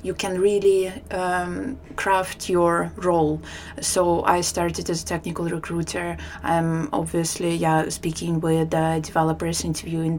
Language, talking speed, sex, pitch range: German, 135 wpm, female, 165-185 Hz